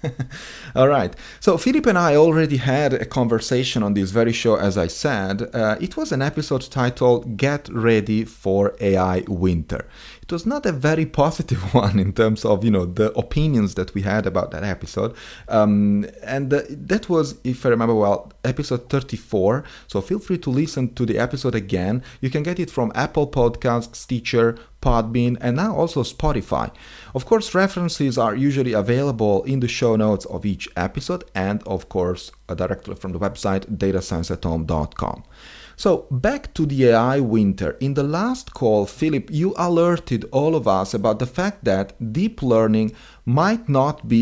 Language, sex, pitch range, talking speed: English, male, 105-145 Hz, 170 wpm